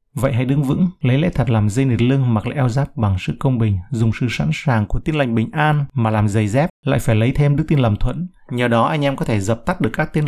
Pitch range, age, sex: 110-140 Hz, 30-49, male